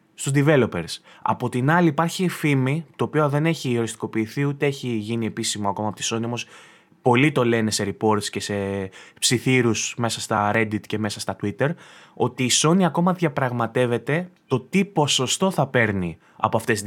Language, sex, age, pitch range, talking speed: Greek, male, 20-39, 115-160 Hz, 175 wpm